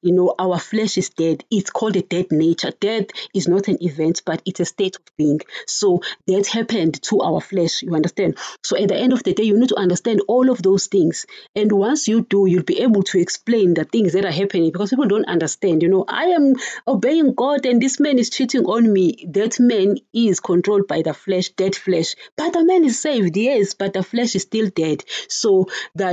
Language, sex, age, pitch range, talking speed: English, female, 30-49, 170-210 Hz, 225 wpm